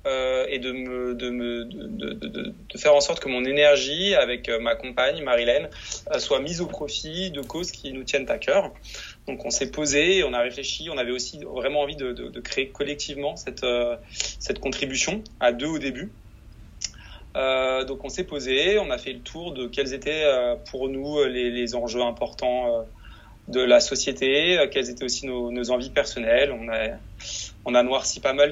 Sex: male